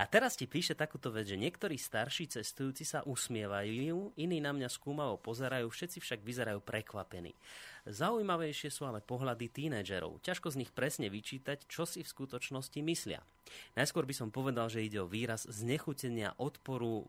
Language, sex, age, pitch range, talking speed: Slovak, male, 30-49, 110-145 Hz, 160 wpm